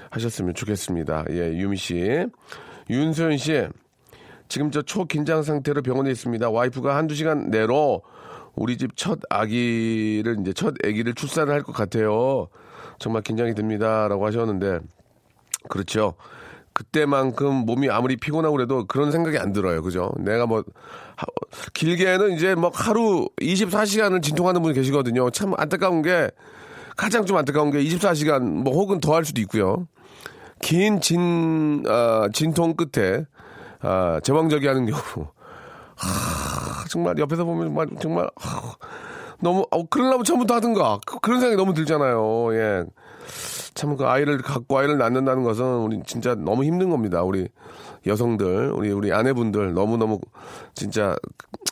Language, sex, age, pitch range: Korean, male, 40-59, 110-165 Hz